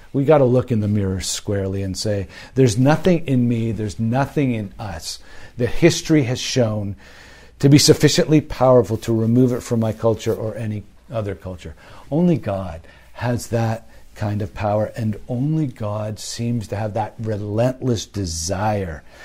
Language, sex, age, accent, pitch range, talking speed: English, male, 50-69, American, 95-130 Hz, 160 wpm